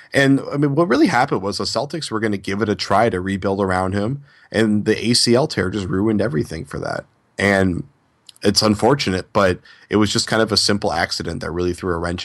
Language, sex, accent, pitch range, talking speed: English, male, American, 95-110 Hz, 225 wpm